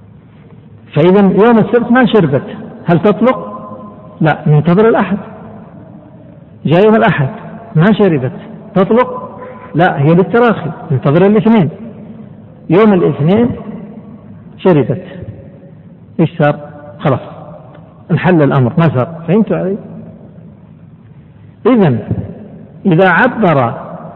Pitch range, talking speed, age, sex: 155-210 Hz, 85 wpm, 60-79, male